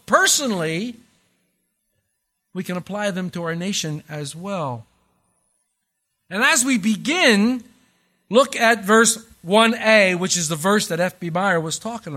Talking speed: 135 wpm